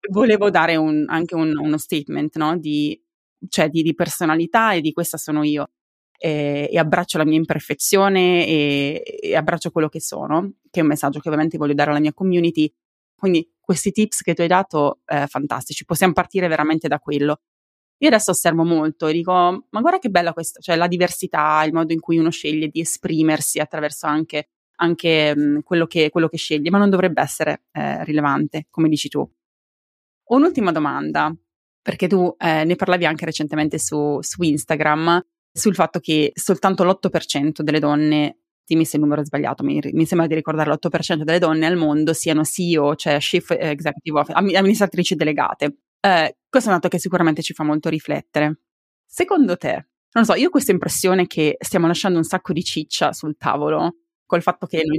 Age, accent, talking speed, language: 20-39, native, 185 wpm, Italian